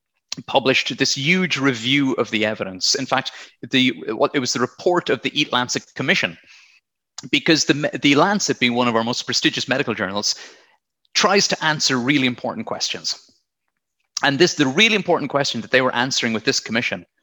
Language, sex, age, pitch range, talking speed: English, male, 30-49, 120-155 Hz, 175 wpm